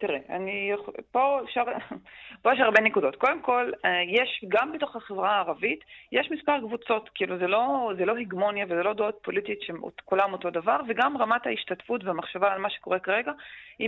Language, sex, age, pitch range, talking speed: Hebrew, female, 30-49, 195-250 Hz, 170 wpm